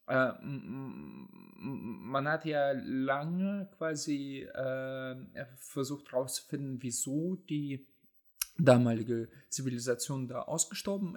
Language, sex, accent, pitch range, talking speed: German, male, German, 125-155 Hz, 80 wpm